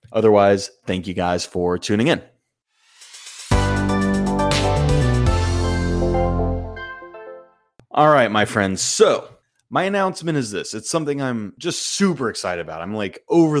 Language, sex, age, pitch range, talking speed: English, male, 30-49, 95-125 Hz, 115 wpm